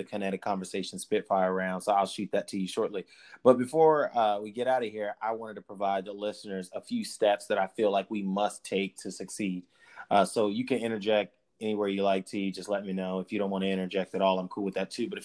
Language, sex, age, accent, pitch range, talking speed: English, male, 30-49, American, 95-110 Hz, 260 wpm